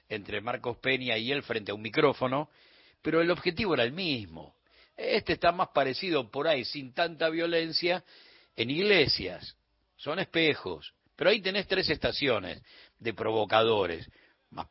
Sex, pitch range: male, 105-145 Hz